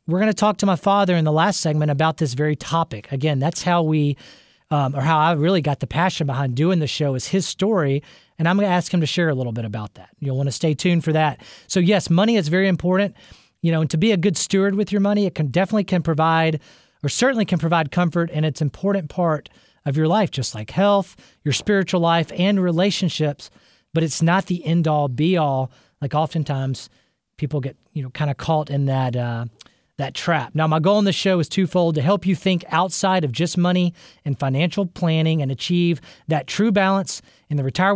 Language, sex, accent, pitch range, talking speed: English, male, American, 150-190 Hz, 230 wpm